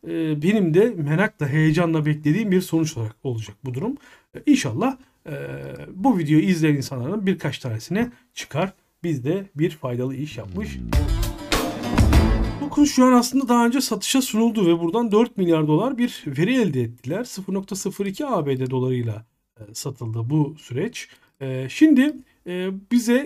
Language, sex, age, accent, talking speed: Turkish, male, 40-59, native, 130 wpm